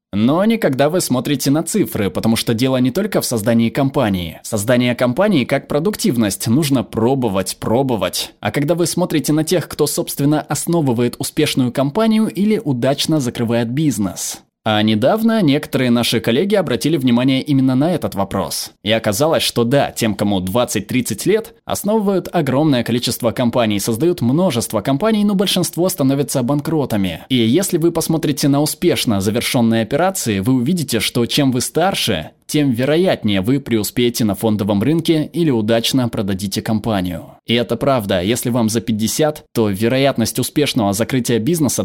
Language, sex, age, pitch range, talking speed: Russian, male, 20-39, 110-150 Hz, 150 wpm